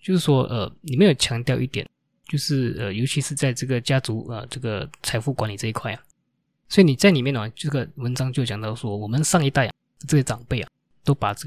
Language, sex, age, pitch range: Chinese, male, 20-39, 120-145 Hz